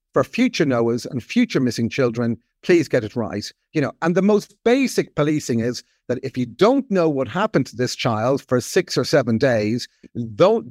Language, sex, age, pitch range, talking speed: English, male, 50-69, 130-175 Hz, 195 wpm